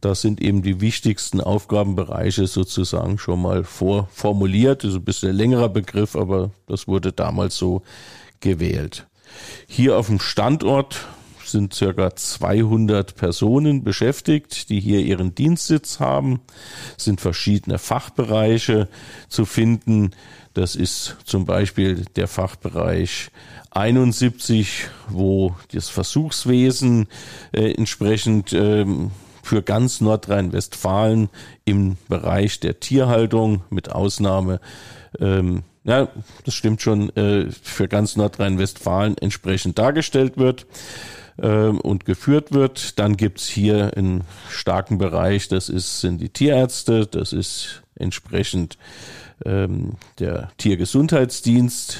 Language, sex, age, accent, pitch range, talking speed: German, male, 50-69, German, 95-115 Hz, 115 wpm